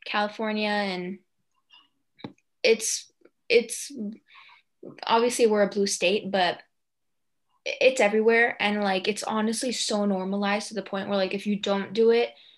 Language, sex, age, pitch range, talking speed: English, female, 20-39, 195-230 Hz, 135 wpm